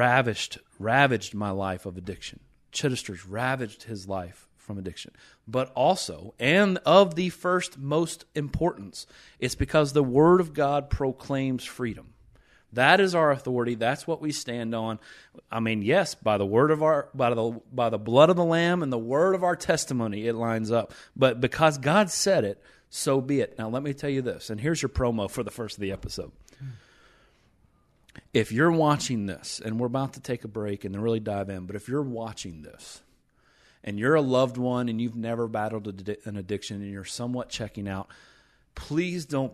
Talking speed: 190 wpm